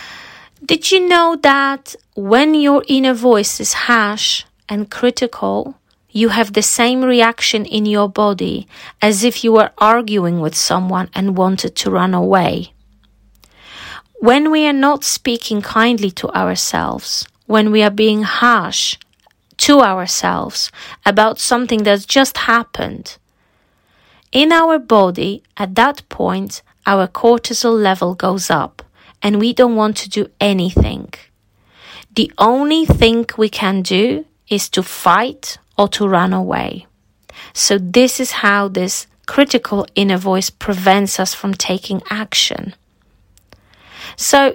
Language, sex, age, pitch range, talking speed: English, female, 30-49, 200-250 Hz, 130 wpm